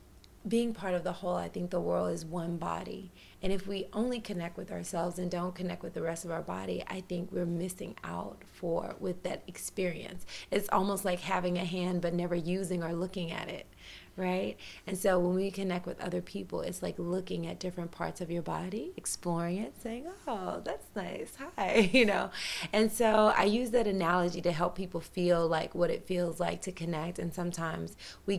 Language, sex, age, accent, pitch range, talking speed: English, female, 30-49, American, 170-195 Hz, 205 wpm